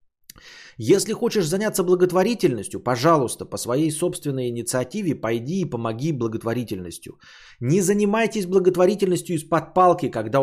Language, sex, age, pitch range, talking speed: Bulgarian, male, 20-39, 120-190 Hz, 110 wpm